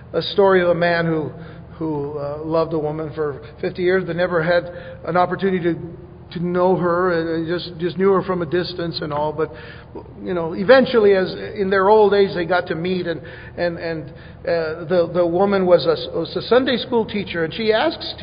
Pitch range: 160-200 Hz